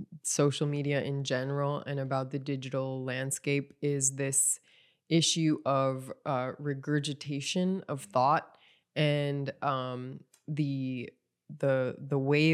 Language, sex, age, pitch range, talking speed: English, female, 20-39, 135-160 Hz, 110 wpm